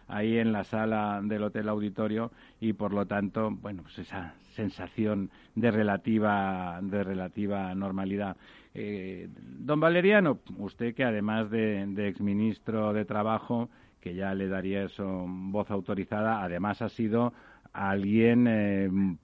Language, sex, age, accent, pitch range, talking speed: Spanish, male, 50-69, Spanish, 95-115 Hz, 135 wpm